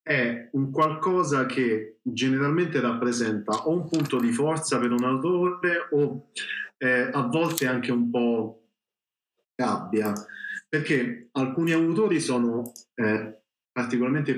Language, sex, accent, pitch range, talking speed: Italian, male, native, 115-135 Hz, 115 wpm